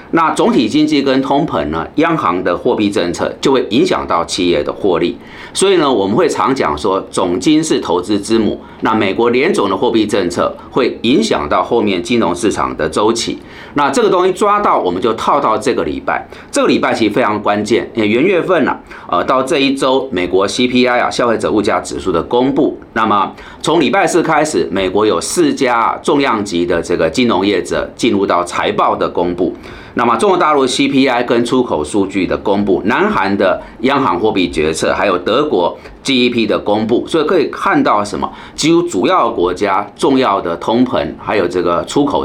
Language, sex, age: Chinese, male, 40-59